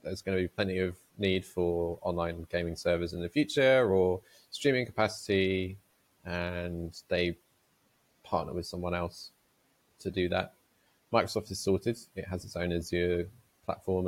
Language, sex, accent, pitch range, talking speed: English, male, British, 85-100 Hz, 150 wpm